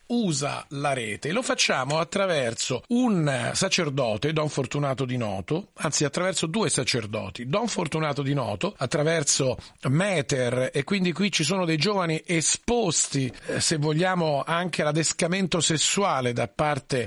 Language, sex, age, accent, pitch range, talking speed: Italian, male, 40-59, native, 140-185 Hz, 135 wpm